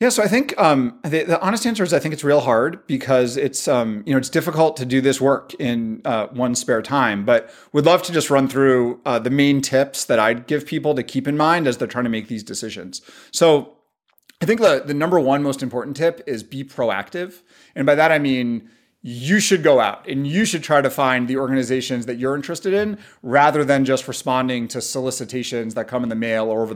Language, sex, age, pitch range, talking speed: English, male, 30-49, 125-165 Hz, 235 wpm